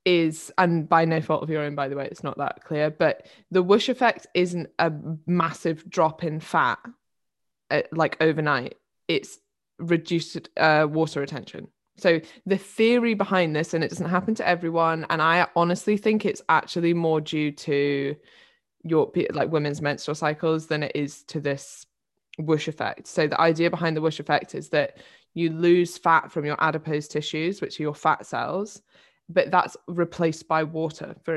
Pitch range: 150-175 Hz